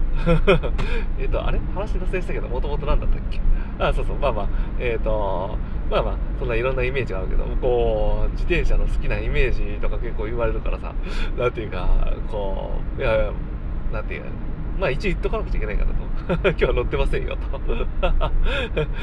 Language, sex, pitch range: Japanese, male, 105-150 Hz